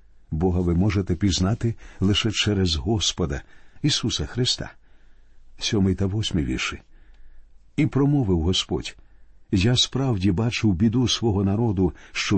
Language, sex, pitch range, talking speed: Ukrainian, male, 95-120 Hz, 105 wpm